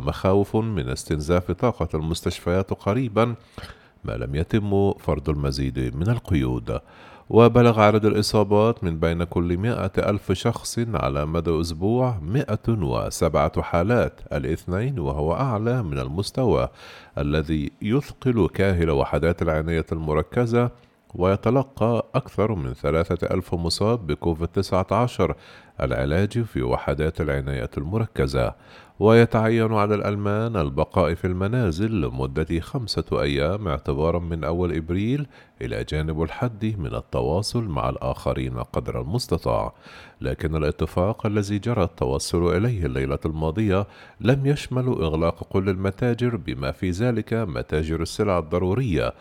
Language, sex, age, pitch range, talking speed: Arabic, male, 40-59, 80-115 Hz, 115 wpm